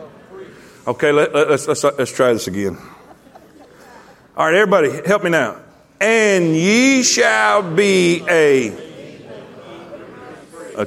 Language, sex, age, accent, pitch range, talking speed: English, male, 40-59, American, 160-255 Hz, 105 wpm